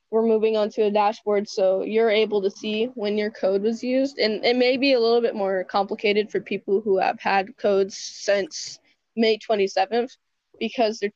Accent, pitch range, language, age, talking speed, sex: American, 200-240 Hz, English, 10-29, 195 wpm, female